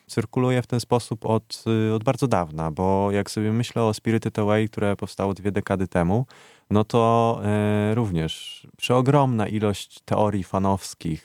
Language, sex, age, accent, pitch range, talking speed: Polish, male, 20-39, native, 85-105 Hz, 145 wpm